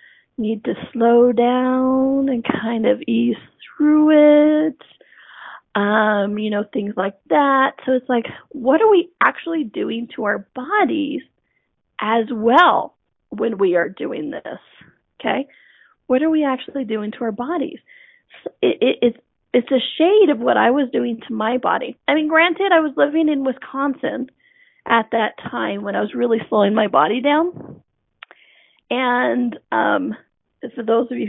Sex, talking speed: female, 160 wpm